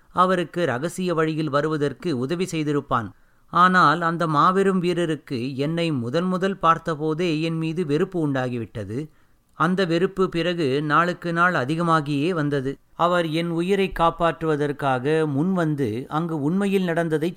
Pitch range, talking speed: 135-170 Hz, 115 wpm